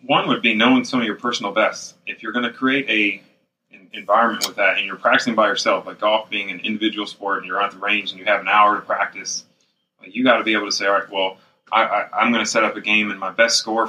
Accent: American